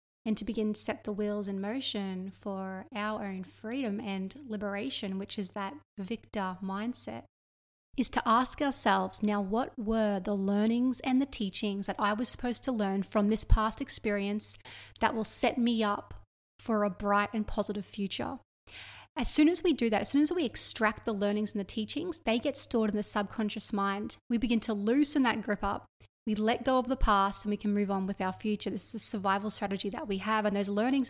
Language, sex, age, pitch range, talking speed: English, female, 30-49, 205-240 Hz, 210 wpm